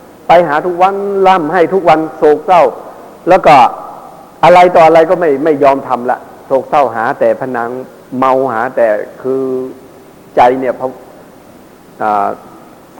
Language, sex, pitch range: Thai, male, 130-175 Hz